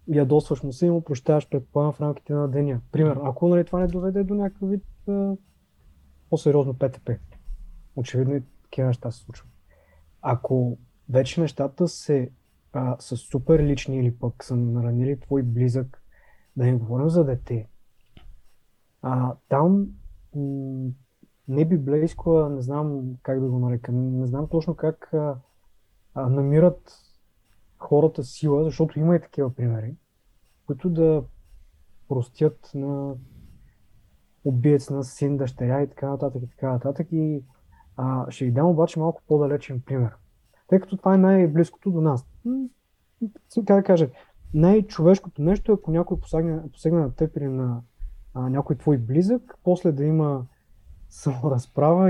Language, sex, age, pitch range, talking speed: Bulgarian, male, 20-39, 125-165 Hz, 140 wpm